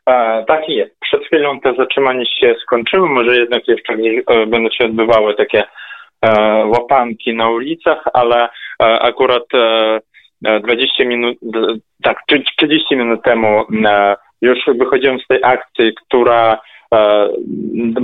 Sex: male